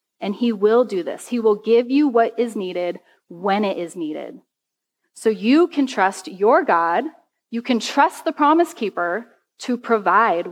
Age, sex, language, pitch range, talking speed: 30-49, female, English, 205-275 Hz, 170 wpm